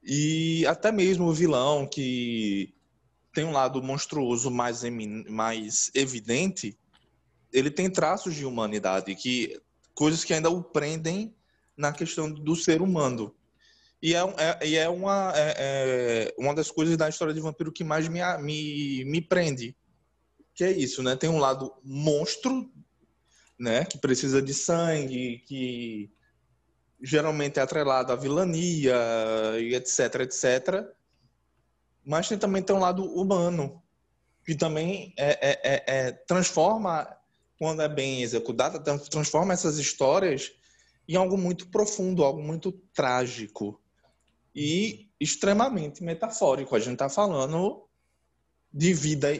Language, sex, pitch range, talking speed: Portuguese, male, 125-170 Hz, 130 wpm